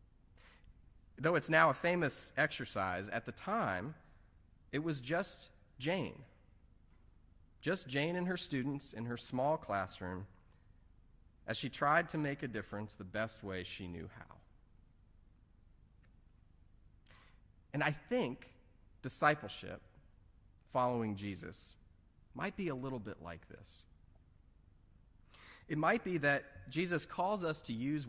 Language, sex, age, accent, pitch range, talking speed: English, male, 30-49, American, 95-135 Hz, 120 wpm